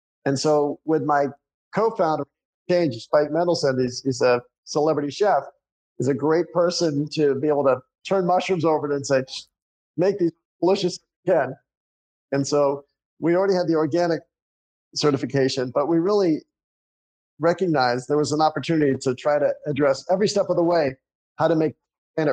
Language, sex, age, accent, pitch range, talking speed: English, male, 50-69, American, 135-165 Hz, 160 wpm